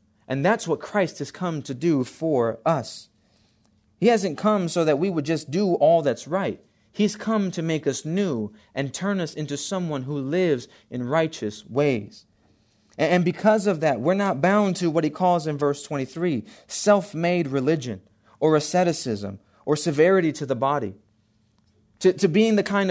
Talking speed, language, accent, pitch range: 175 wpm, English, American, 135-185 Hz